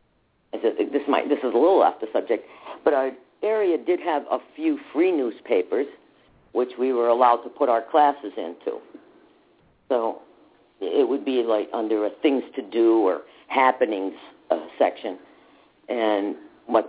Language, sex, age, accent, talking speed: English, female, 50-69, American, 155 wpm